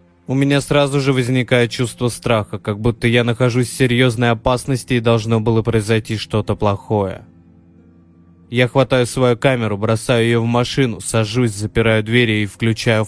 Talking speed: 150 wpm